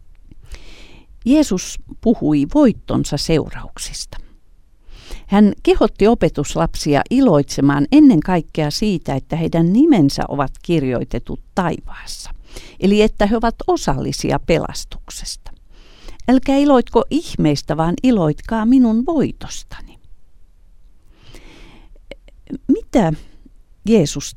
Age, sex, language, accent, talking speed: 50-69, female, Finnish, native, 80 wpm